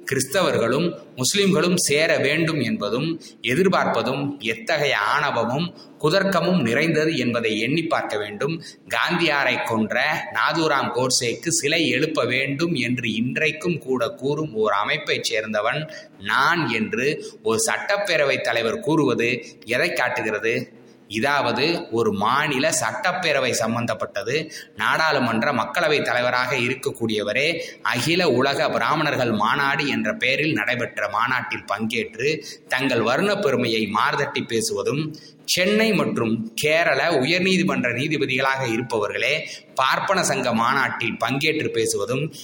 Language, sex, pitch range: Tamil, male, 125-180 Hz